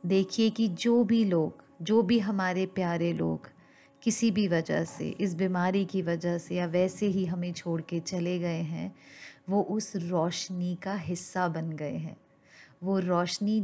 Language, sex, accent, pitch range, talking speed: Hindi, female, native, 170-195 Hz, 165 wpm